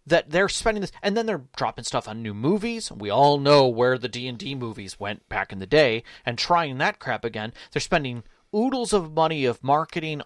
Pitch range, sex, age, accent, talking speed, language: 120-155 Hz, male, 30-49, American, 210 wpm, English